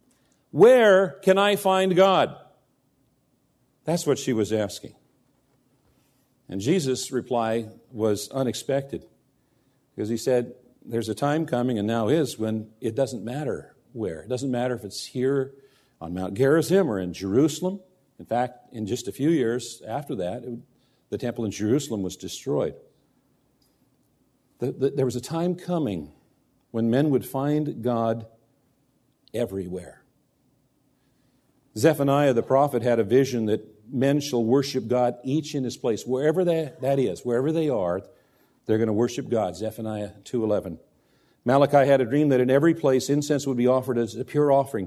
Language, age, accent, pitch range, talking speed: English, 50-69, American, 115-145 Hz, 150 wpm